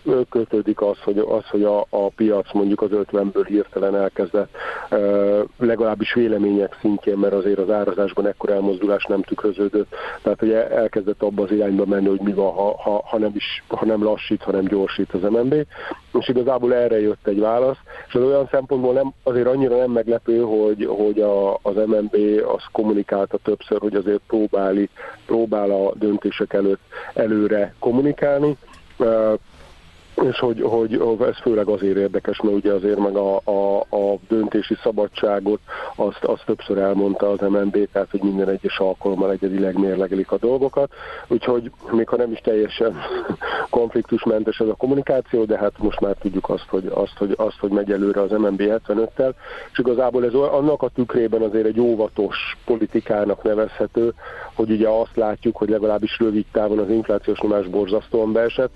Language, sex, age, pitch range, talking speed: Hungarian, male, 50-69, 100-110 Hz, 160 wpm